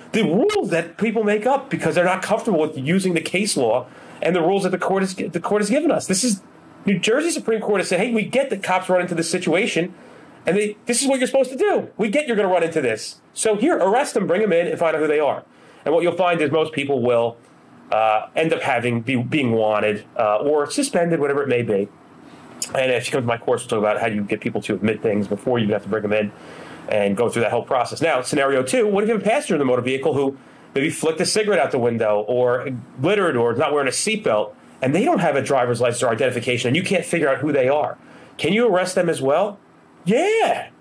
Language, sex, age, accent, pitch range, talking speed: English, male, 30-49, American, 130-215 Hz, 265 wpm